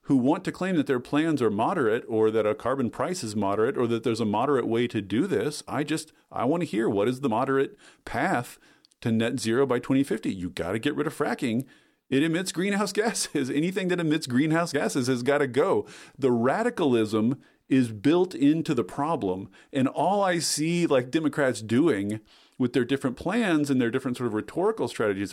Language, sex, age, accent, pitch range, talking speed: English, male, 40-59, American, 115-155 Hz, 205 wpm